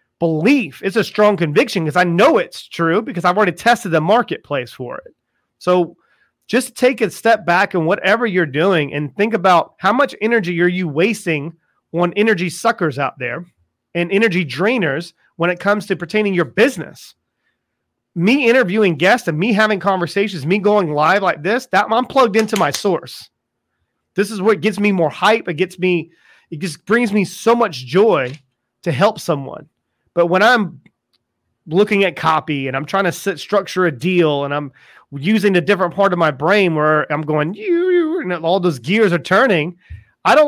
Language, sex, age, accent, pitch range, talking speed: English, male, 30-49, American, 160-215 Hz, 185 wpm